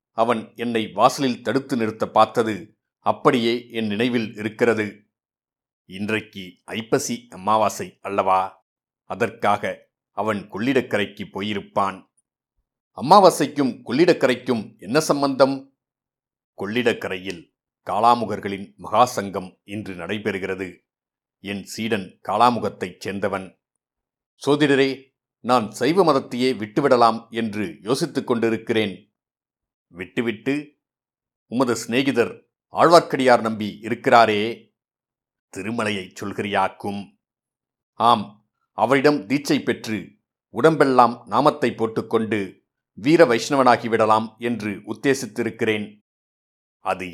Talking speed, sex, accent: 75 wpm, male, native